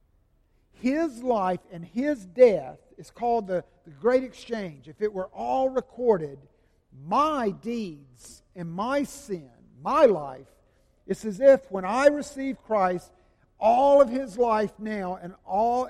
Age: 50-69